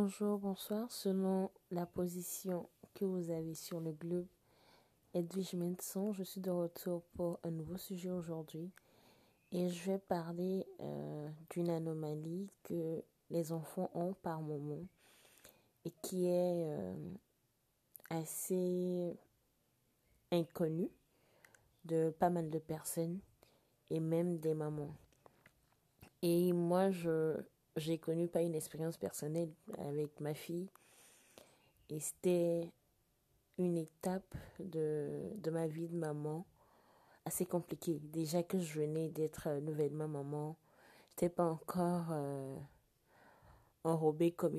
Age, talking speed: 30-49, 120 wpm